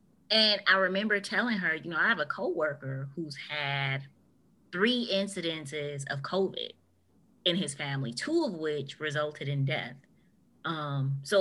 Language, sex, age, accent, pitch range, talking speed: English, female, 20-39, American, 160-225 Hz, 145 wpm